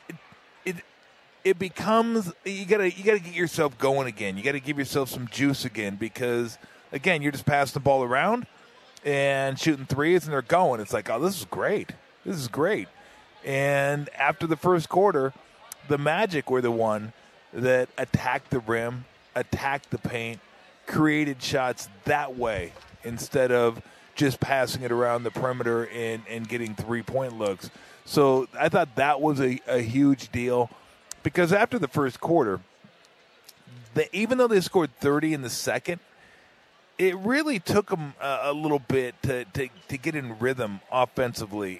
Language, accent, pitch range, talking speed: English, American, 120-150 Hz, 160 wpm